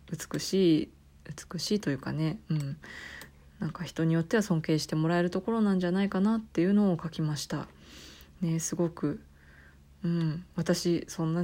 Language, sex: Japanese, female